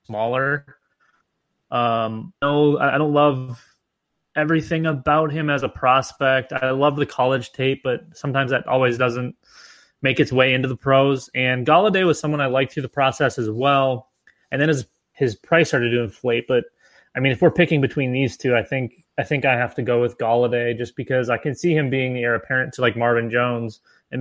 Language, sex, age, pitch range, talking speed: English, male, 20-39, 120-140 Hz, 200 wpm